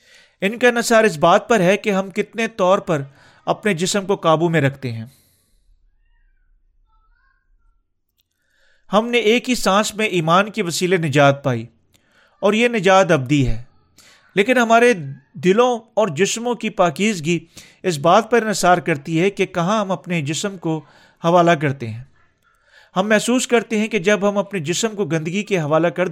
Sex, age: male, 40-59